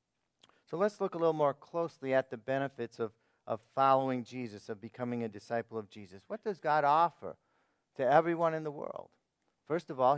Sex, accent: male, American